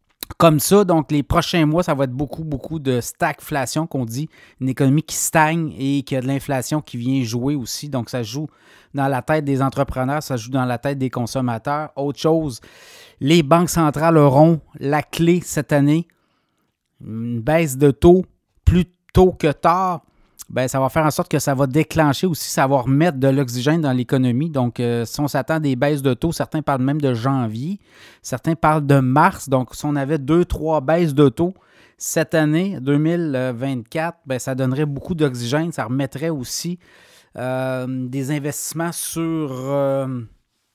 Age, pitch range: 30-49, 135-160 Hz